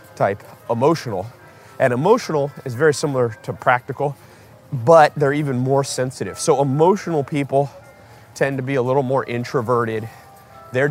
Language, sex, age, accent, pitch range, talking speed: English, male, 30-49, American, 110-140 Hz, 140 wpm